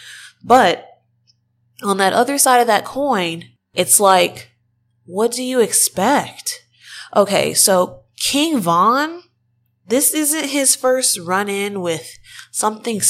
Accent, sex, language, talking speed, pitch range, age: American, female, English, 115 wpm, 160-205 Hz, 20-39